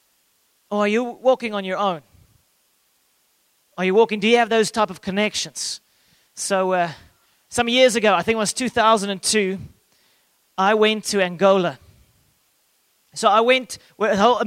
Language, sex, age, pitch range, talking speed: English, male, 30-49, 200-240 Hz, 150 wpm